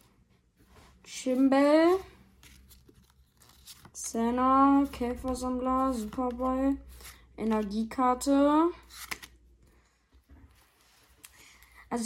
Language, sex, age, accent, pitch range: German, female, 20-39, German, 210-245 Hz